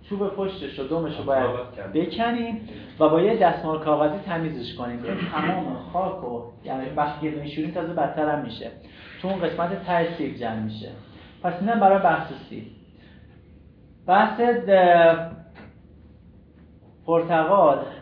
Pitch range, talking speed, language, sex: 130-180 Hz, 125 wpm, Persian, male